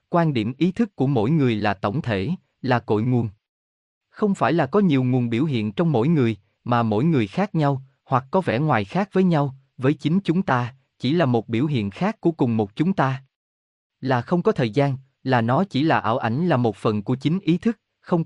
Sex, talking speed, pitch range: male, 230 wpm, 115-165 Hz